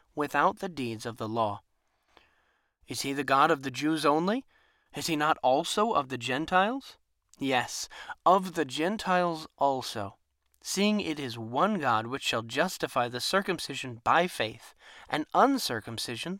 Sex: male